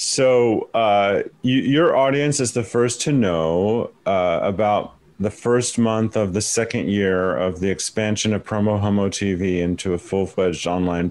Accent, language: American, English